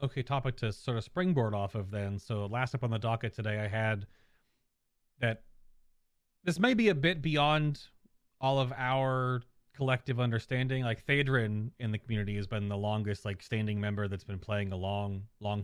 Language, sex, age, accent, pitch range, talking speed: English, male, 30-49, American, 105-130 Hz, 185 wpm